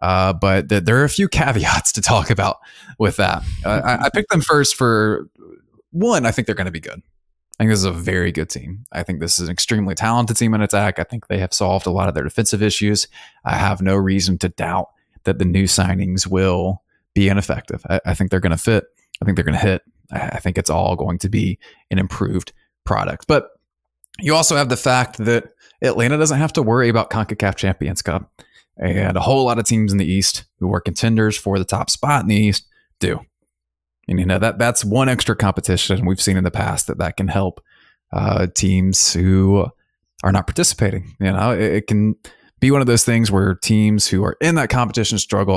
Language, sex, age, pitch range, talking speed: English, male, 20-39, 95-110 Hz, 225 wpm